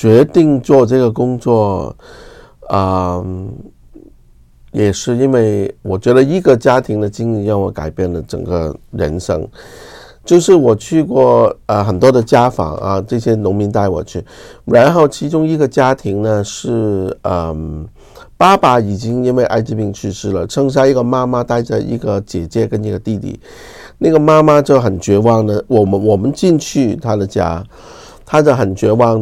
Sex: male